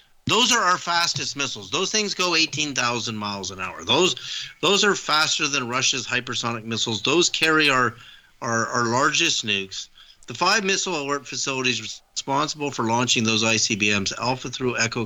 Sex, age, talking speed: male, 50-69, 160 wpm